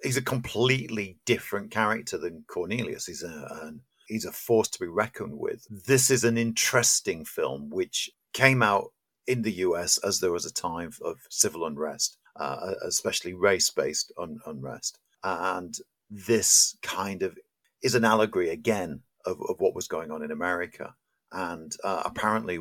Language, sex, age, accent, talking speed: English, male, 50-69, British, 150 wpm